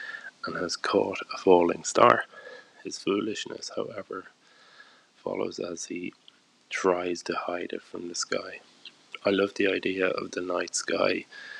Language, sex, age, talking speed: English, male, 20-39, 140 wpm